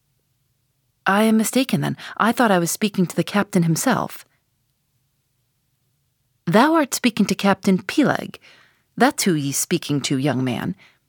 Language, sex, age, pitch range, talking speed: English, female, 40-59, 130-220 Hz, 140 wpm